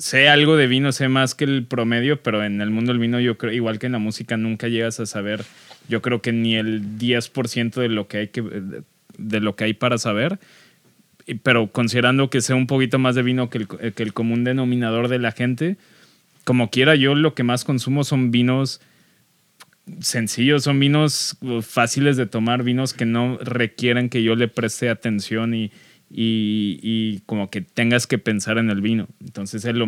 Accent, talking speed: Mexican, 200 wpm